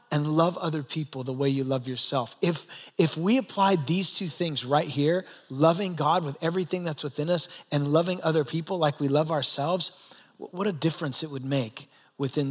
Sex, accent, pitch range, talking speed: male, American, 150-200 Hz, 190 wpm